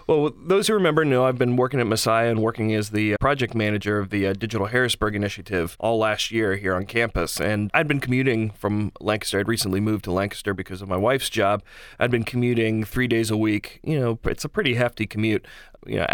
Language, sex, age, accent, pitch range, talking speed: English, male, 30-49, American, 105-120 Hz, 225 wpm